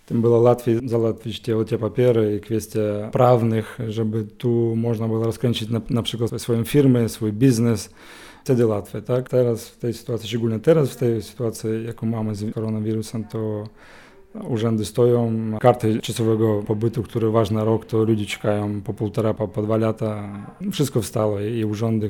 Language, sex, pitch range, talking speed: Polish, male, 110-120 Hz, 160 wpm